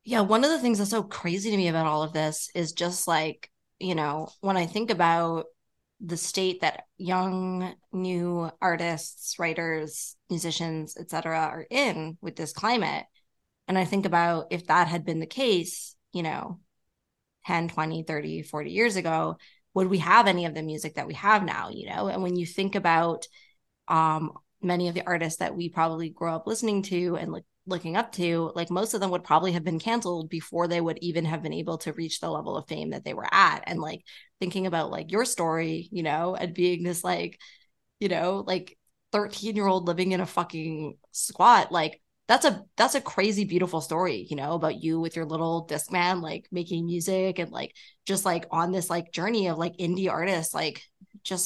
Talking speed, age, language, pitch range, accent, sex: 205 wpm, 20-39, English, 165-190 Hz, American, female